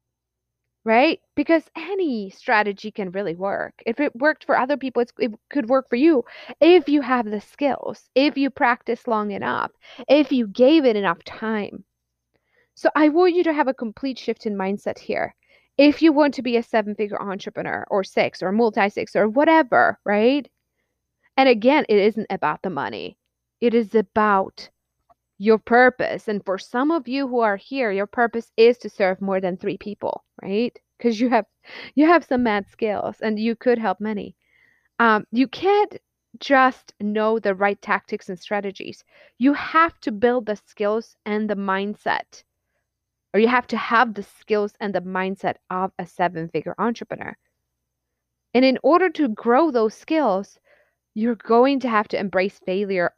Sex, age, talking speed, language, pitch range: female, 20-39, 175 wpm, English, 205-270 Hz